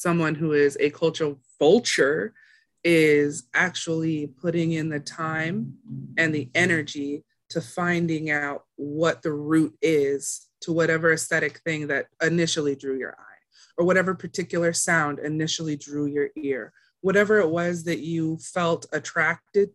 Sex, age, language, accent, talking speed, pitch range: female, 20-39, English, American, 140 wpm, 150-175 Hz